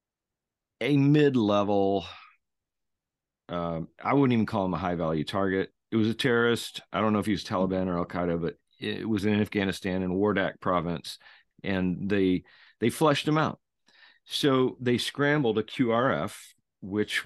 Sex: male